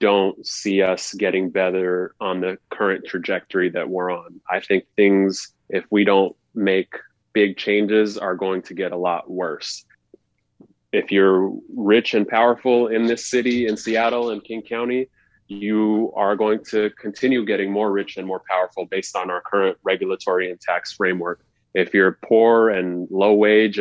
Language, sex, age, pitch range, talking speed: English, male, 30-49, 95-110 Hz, 165 wpm